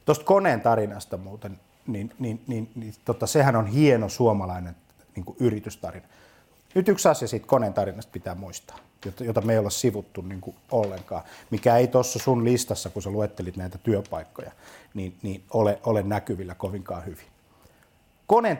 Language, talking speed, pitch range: Finnish, 160 wpm, 105-140 Hz